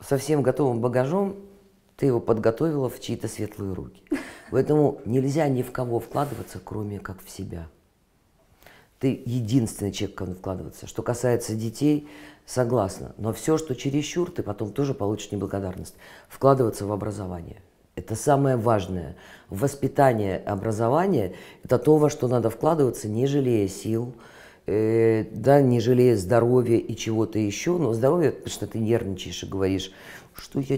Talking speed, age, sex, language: 145 wpm, 40-59, female, Russian